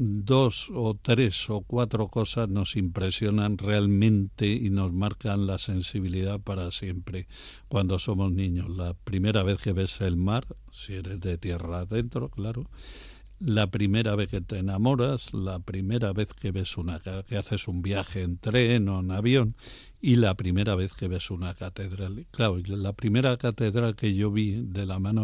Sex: male